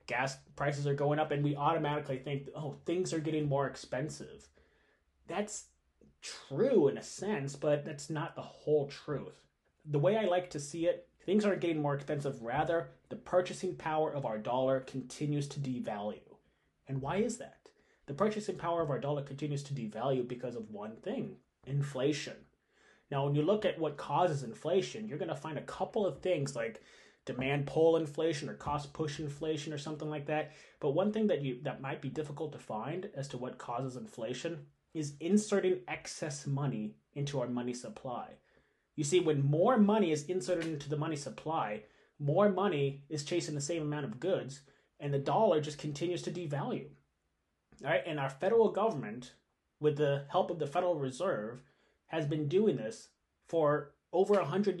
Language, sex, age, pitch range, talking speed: English, male, 30-49, 140-175 Hz, 180 wpm